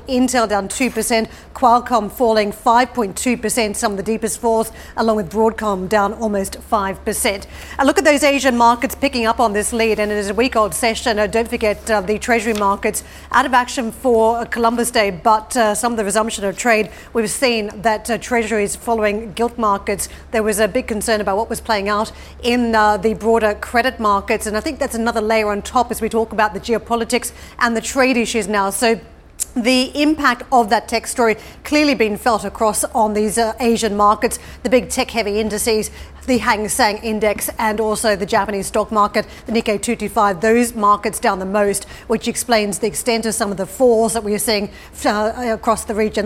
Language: English